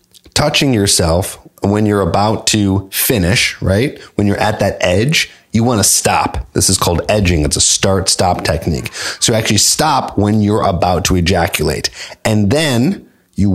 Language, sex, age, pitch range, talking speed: English, male, 30-49, 90-110 Hz, 160 wpm